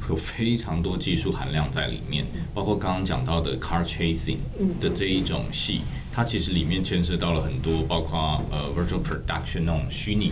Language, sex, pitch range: Japanese, male, 80-105 Hz